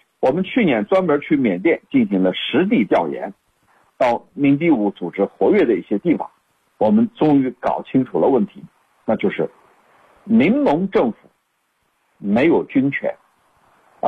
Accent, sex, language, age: native, male, Chinese, 60-79